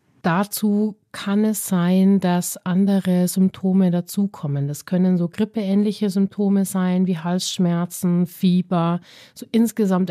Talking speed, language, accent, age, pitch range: 115 wpm, German, German, 30-49, 180-205 Hz